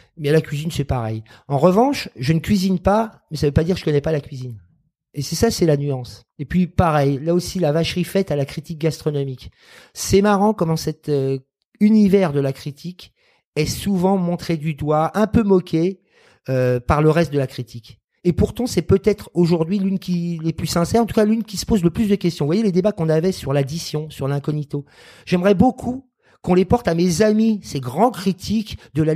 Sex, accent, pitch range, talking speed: male, French, 140-195 Hz, 225 wpm